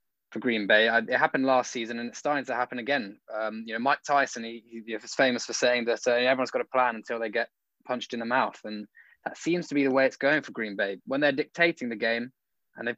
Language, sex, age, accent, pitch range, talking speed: English, male, 10-29, British, 110-130 Hz, 255 wpm